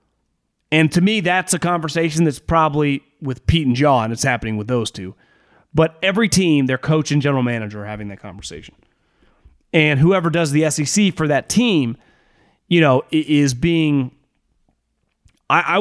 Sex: male